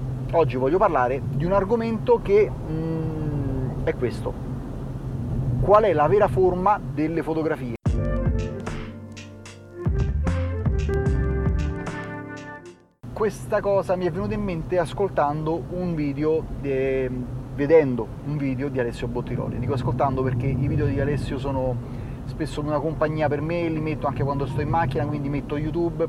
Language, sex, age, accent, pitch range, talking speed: Italian, male, 30-49, native, 125-150 Hz, 130 wpm